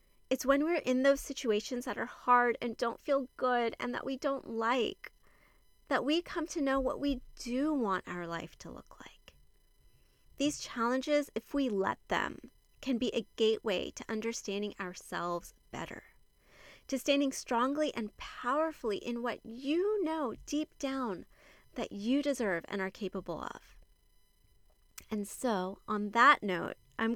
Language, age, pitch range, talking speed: English, 30-49, 210-270 Hz, 155 wpm